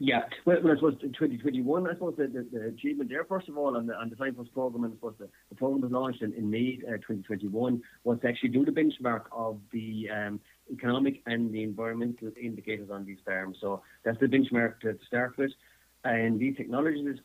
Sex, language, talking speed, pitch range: male, English, 210 wpm, 105-125 Hz